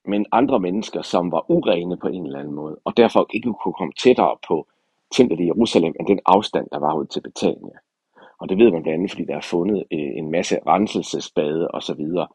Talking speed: 210 wpm